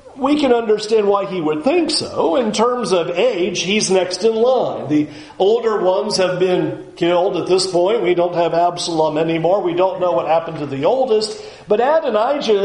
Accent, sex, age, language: American, male, 40-59, English